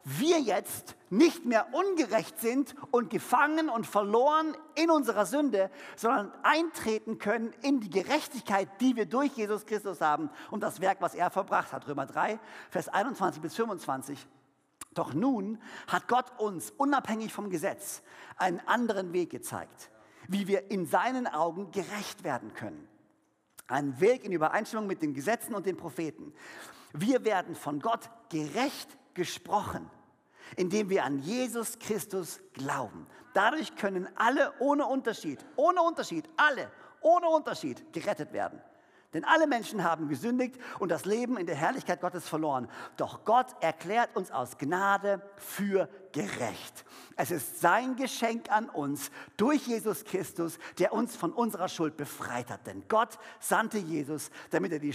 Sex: male